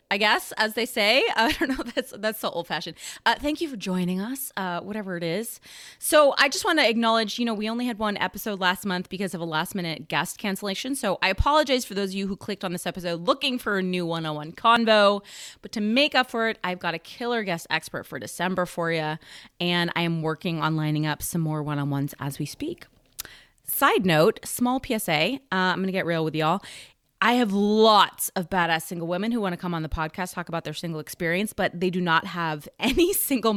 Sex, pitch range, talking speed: female, 175-225 Hz, 225 wpm